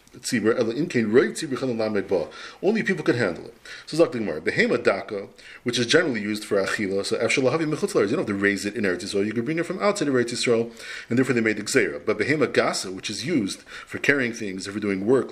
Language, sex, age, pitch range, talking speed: English, male, 40-59, 110-140 Hz, 210 wpm